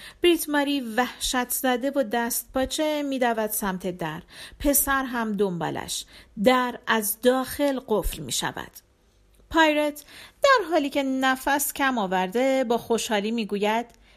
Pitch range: 220-295 Hz